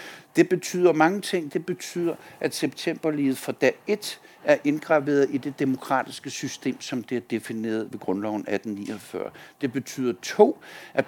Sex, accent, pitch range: male, native, 115-150 Hz